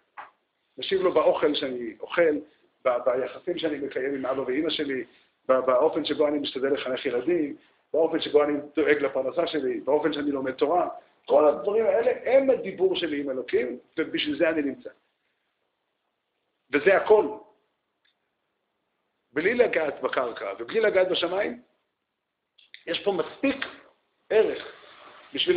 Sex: male